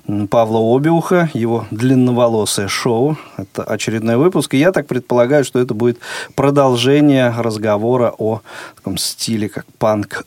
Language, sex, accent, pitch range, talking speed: Russian, male, native, 105-130 Hz, 130 wpm